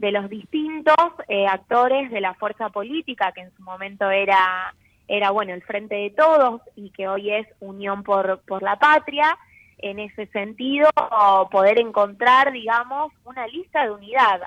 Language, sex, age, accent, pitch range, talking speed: Italian, female, 20-39, Argentinian, 200-275 Hz, 160 wpm